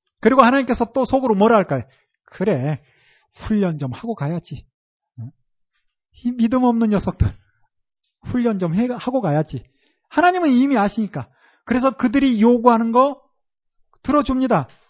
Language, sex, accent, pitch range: Korean, male, native, 155-245 Hz